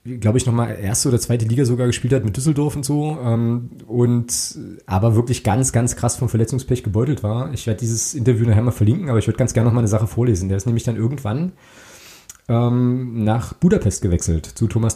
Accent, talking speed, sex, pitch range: German, 215 wpm, male, 110-130 Hz